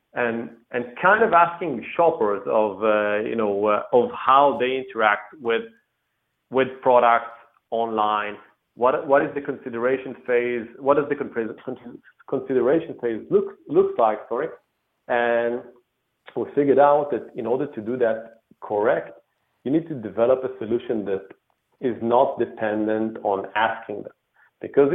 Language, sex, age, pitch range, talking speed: English, male, 40-59, 110-135 Hz, 145 wpm